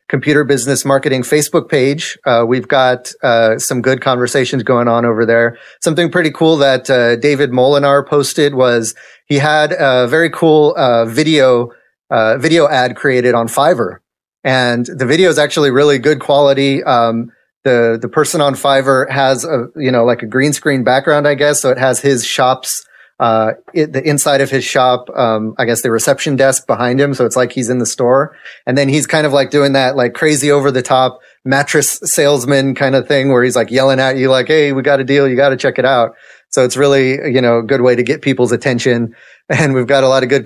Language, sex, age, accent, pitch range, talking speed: English, male, 30-49, American, 120-145 Hz, 215 wpm